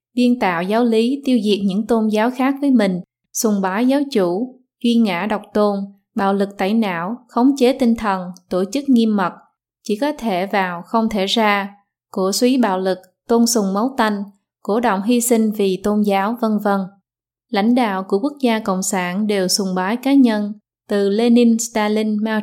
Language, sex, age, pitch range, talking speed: Vietnamese, female, 20-39, 190-235 Hz, 195 wpm